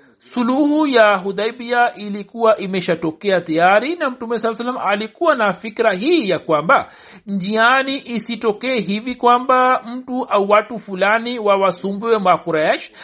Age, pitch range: 60-79, 195-245 Hz